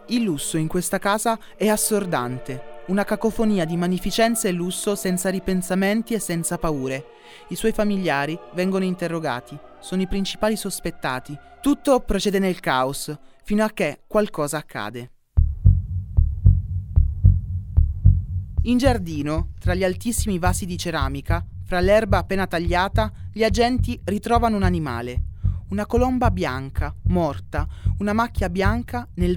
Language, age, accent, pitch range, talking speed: Italian, 30-49, native, 115-195 Hz, 125 wpm